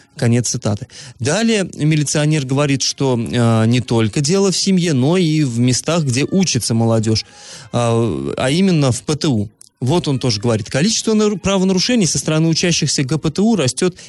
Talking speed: 150 wpm